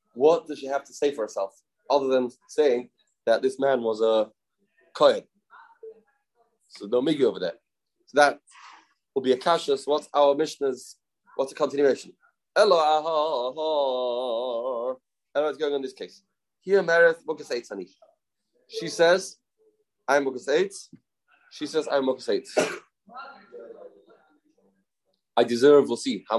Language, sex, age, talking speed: English, male, 30-49, 135 wpm